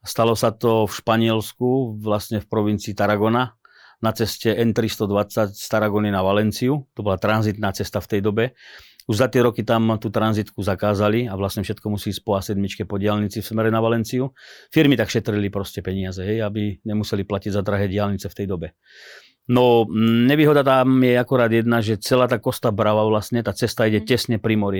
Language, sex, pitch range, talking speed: Slovak, male, 105-120 Hz, 185 wpm